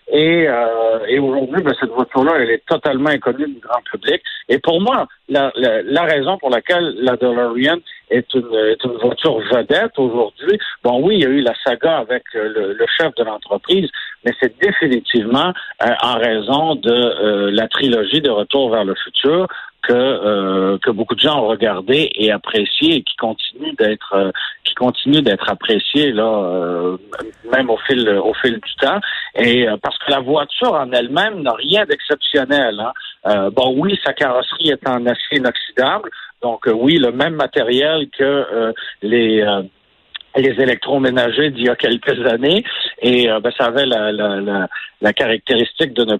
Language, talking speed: French, 185 wpm